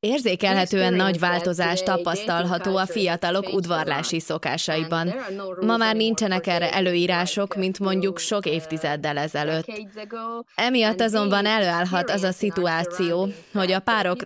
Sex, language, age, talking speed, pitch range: female, Hungarian, 20-39, 115 wpm, 175-200 Hz